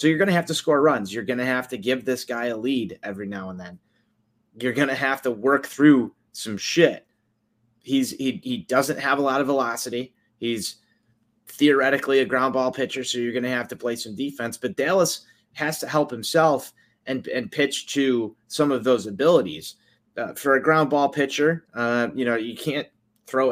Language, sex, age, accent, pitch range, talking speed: English, male, 30-49, American, 115-140 Hz, 205 wpm